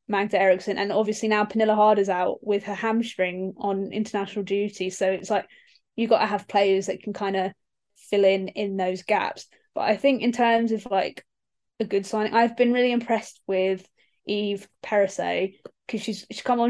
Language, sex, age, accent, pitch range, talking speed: English, female, 10-29, British, 200-230 Hz, 185 wpm